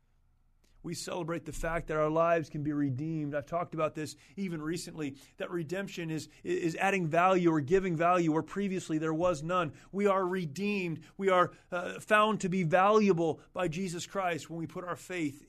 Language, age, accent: English, 30-49, American